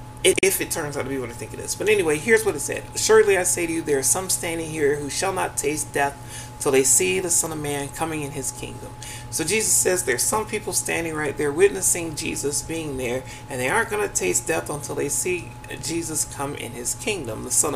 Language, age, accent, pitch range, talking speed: English, 30-49, American, 120-155 Hz, 245 wpm